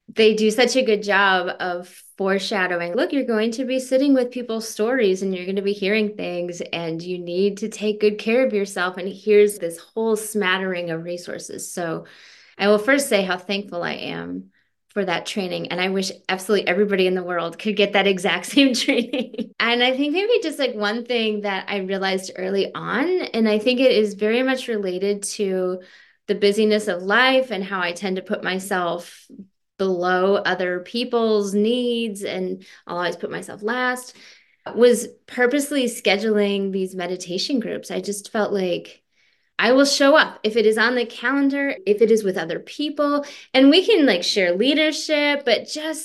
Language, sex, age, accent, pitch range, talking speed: English, female, 20-39, American, 185-240 Hz, 185 wpm